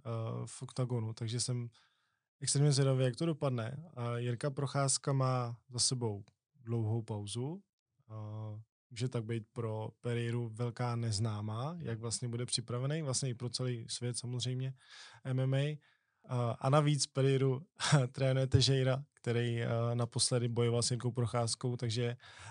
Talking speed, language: 125 wpm, Czech